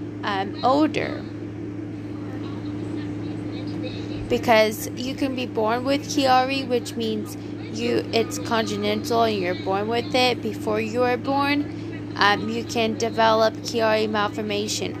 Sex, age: female, 20-39